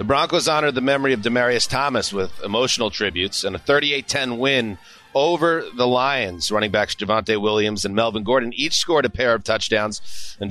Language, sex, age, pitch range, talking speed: English, male, 30-49, 100-115 Hz, 185 wpm